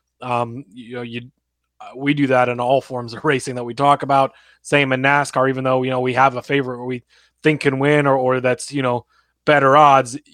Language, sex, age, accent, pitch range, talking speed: English, male, 20-39, American, 130-145 Hz, 225 wpm